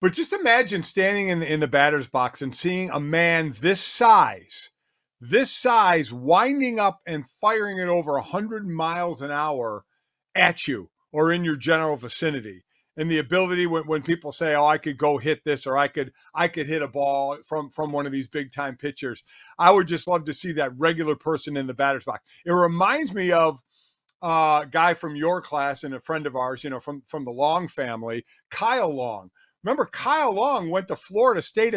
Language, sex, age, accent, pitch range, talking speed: English, male, 50-69, American, 145-210 Hz, 205 wpm